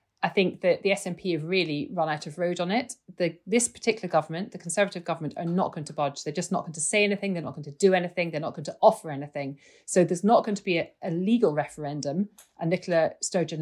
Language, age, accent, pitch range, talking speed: English, 40-59, British, 165-205 Hz, 245 wpm